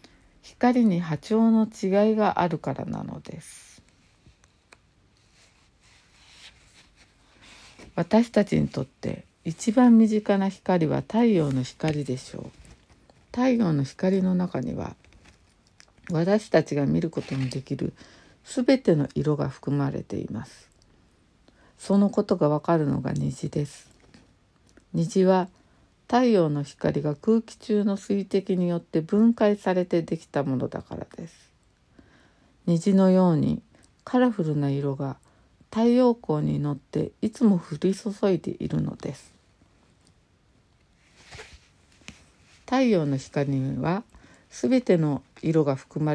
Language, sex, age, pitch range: Japanese, female, 60-79, 140-205 Hz